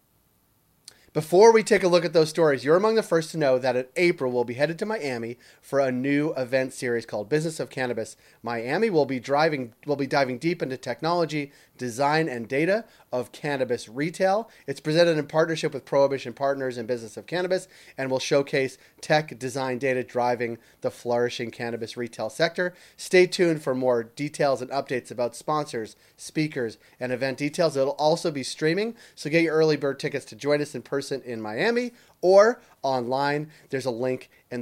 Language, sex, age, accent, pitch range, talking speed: English, male, 30-49, American, 125-160 Hz, 185 wpm